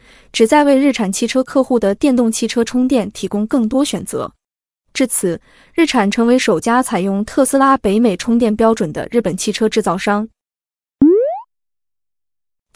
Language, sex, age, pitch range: Chinese, female, 20-39, 210-260 Hz